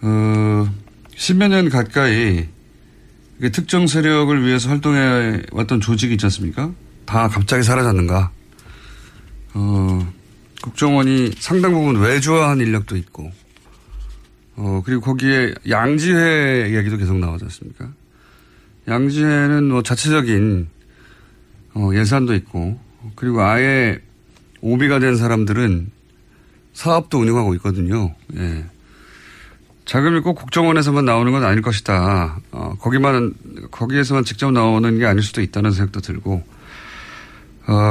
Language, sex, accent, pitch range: Korean, male, native, 95-130 Hz